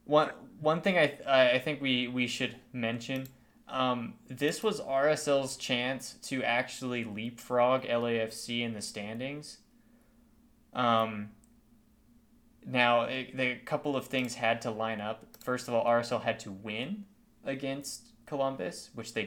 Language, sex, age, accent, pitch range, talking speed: English, male, 20-39, American, 110-130 Hz, 145 wpm